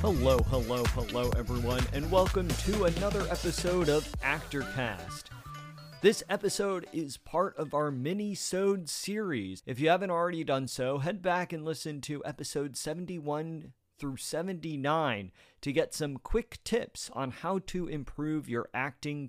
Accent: American